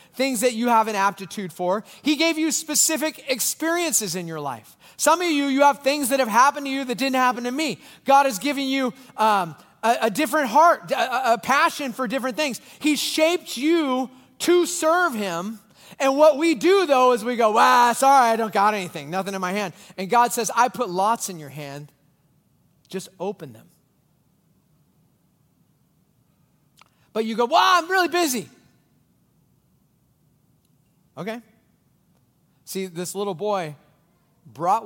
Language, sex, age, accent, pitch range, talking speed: English, male, 30-49, American, 150-250 Hz, 165 wpm